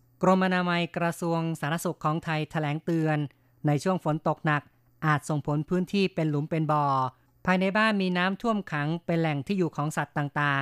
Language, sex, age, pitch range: Thai, female, 20-39, 145-165 Hz